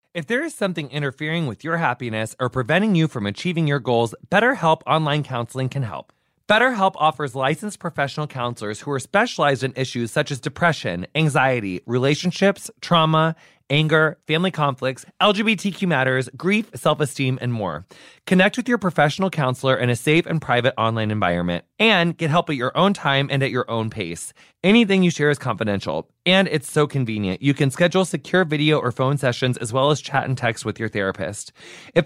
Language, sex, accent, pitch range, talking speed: English, male, American, 125-170 Hz, 180 wpm